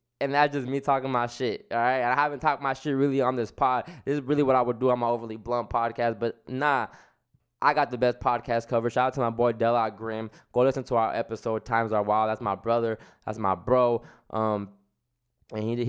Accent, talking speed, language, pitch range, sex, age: American, 235 wpm, English, 115-145 Hz, male, 10-29